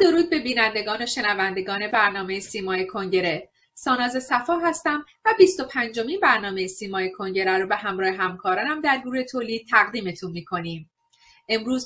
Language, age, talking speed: Persian, 30-49, 135 wpm